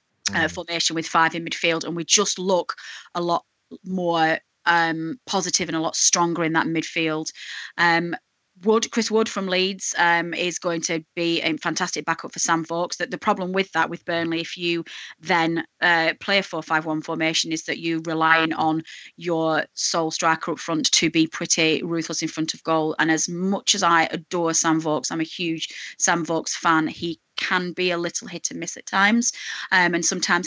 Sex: female